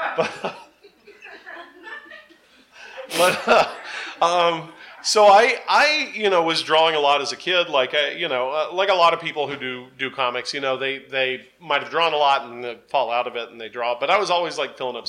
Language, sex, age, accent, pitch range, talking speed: English, male, 40-59, American, 125-170 Hz, 205 wpm